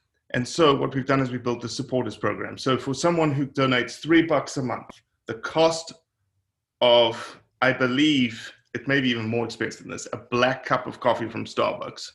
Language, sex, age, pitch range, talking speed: English, male, 30-49, 120-145 Hz, 200 wpm